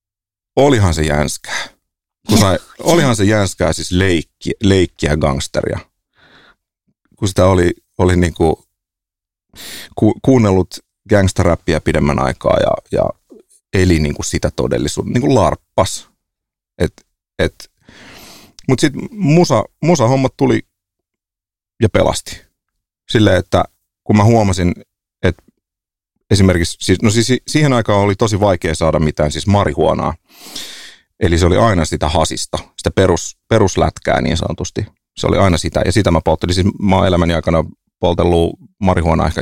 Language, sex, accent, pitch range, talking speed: Finnish, male, native, 80-100 Hz, 125 wpm